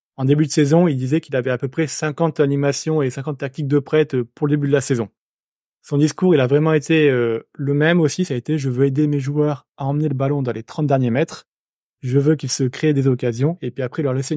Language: French